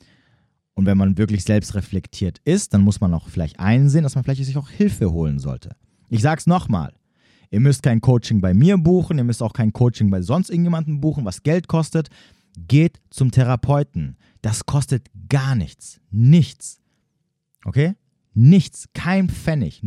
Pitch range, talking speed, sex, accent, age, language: 110-155 Hz, 165 wpm, male, German, 40-59, German